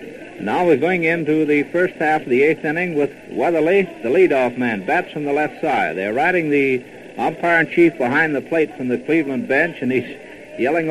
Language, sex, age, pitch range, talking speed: English, male, 60-79, 150-180 Hz, 205 wpm